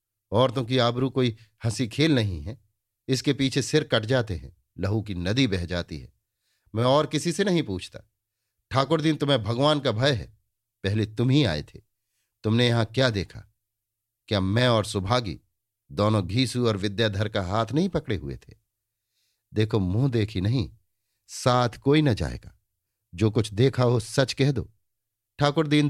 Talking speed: 165 wpm